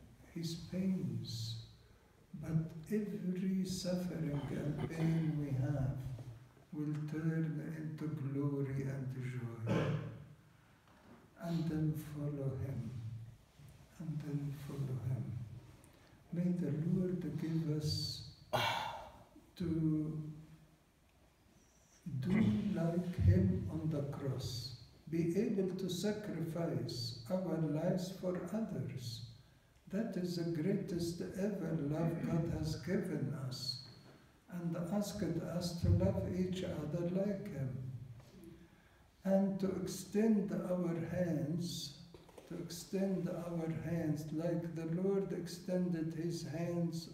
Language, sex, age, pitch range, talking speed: English, male, 60-79, 140-180 Hz, 100 wpm